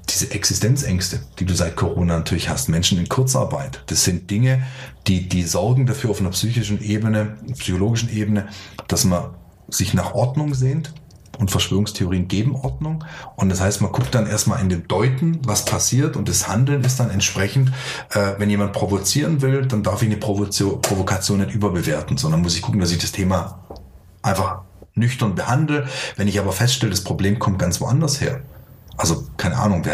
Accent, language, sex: German, German, male